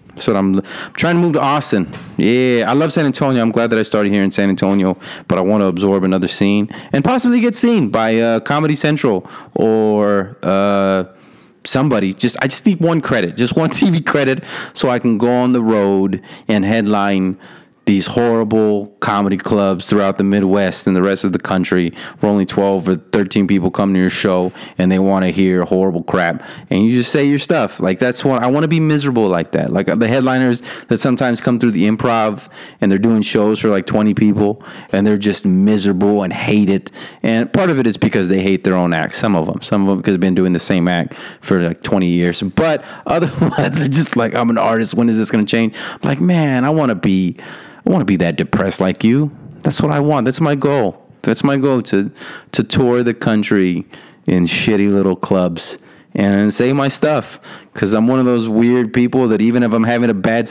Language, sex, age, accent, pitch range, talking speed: English, male, 30-49, American, 100-130 Hz, 220 wpm